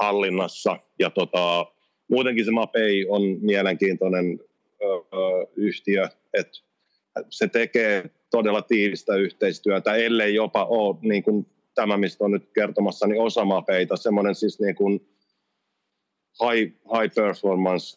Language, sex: Finnish, male